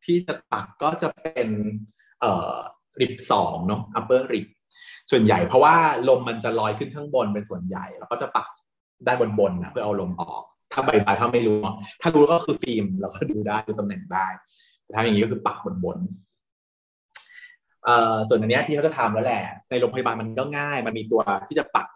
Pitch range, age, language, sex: 105-160 Hz, 20-39, Thai, male